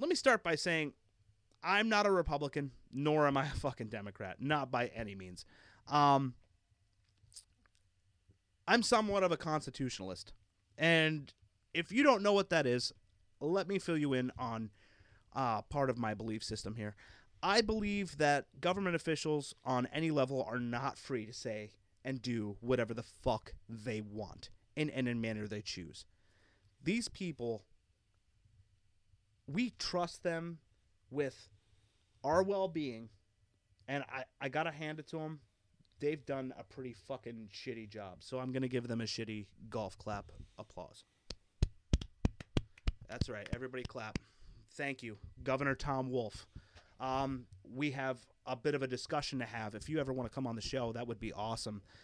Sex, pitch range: male, 105-145 Hz